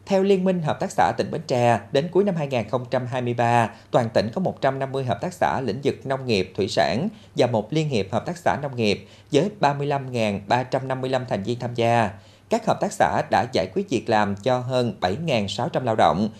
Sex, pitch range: male, 120-170 Hz